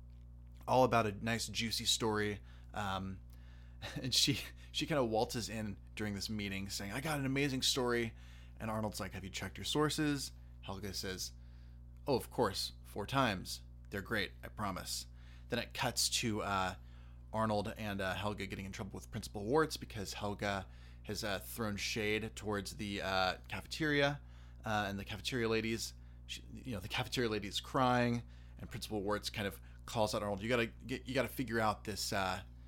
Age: 20-39